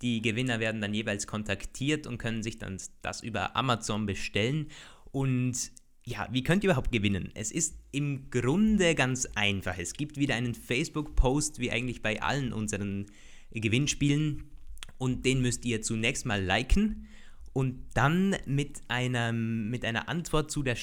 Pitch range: 110-145 Hz